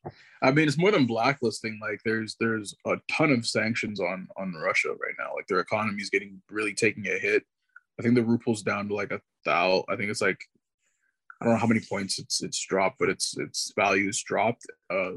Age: 20-39